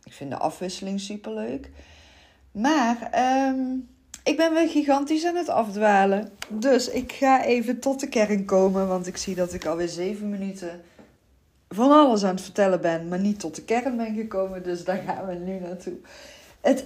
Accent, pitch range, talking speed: Dutch, 170-235 Hz, 180 wpm